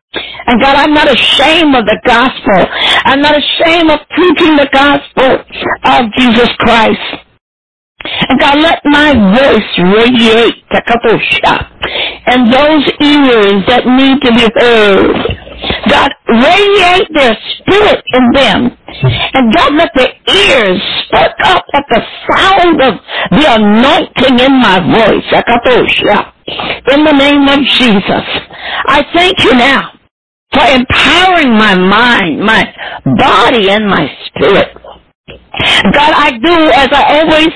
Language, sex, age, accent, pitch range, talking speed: English, female, 50-69, American, 235-300 Hz, 125 wpm